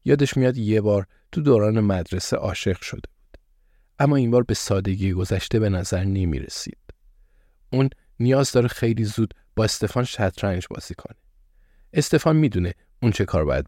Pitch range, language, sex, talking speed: 90-120 Hz, Persian, male, 160 wpm